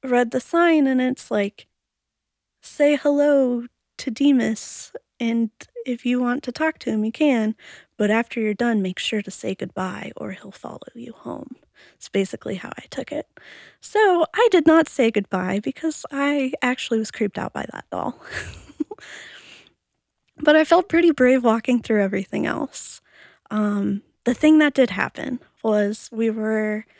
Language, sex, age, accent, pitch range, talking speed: English, female, 20-39, American, 220-270 Hz, 160 wpm